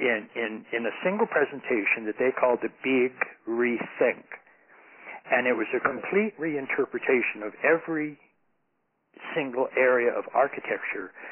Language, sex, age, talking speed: English, male, 60-79, 125 wpm